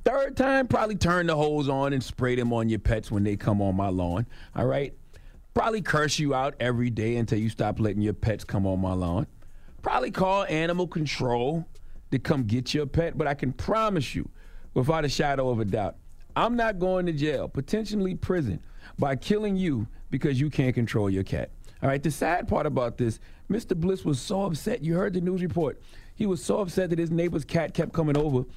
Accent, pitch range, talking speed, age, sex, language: American, 120-170 Hz, 210 wpm, 40-59, male, English